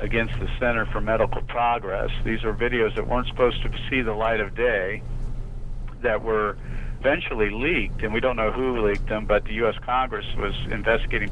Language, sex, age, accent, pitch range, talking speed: English, male, 50-69, American, 105-120 Hz, 185 wpm